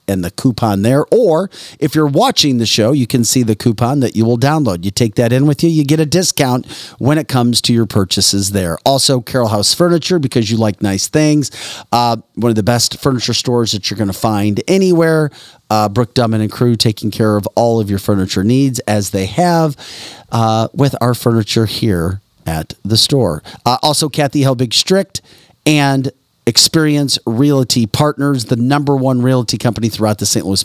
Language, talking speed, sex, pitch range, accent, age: English, 190 wpm, male, 110-140 Hz, American, 40-59